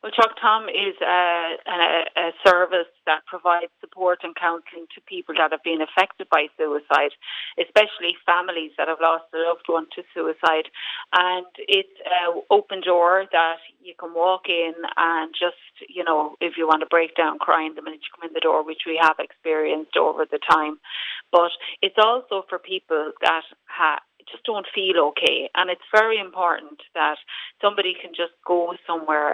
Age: 30-49